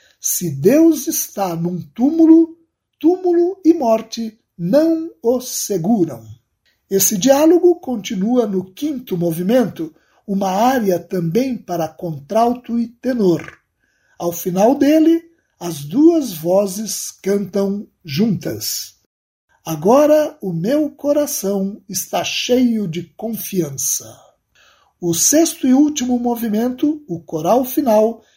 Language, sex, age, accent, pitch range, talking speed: Portuguese, male, 60-79, Brazilian, 190-275 Hz, 100 wpm